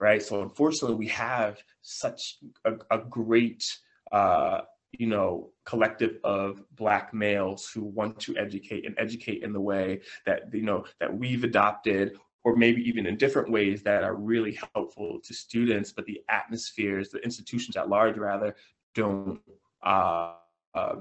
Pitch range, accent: 100-115 Hz, American